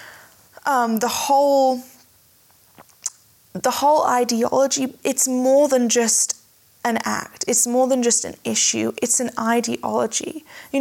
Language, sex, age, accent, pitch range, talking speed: English, female, 10-29, British, 230-270 Hz, 115 wpm